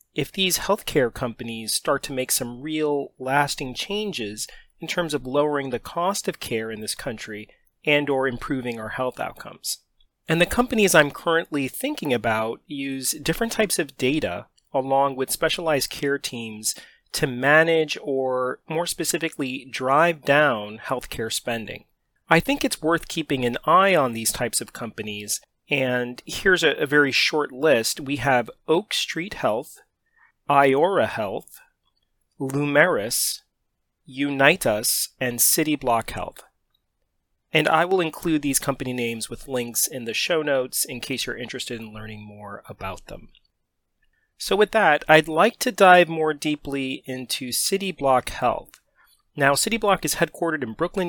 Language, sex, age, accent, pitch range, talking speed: English, male, 30-49, American, 125-165 Hz, 150 wpm